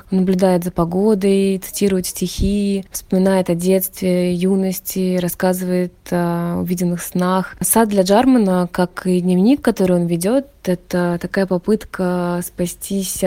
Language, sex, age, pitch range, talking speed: Russian, female, 20-39, 180-195 Hz, 120 wpm